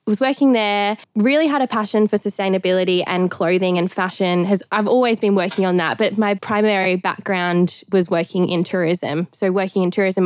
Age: 10-29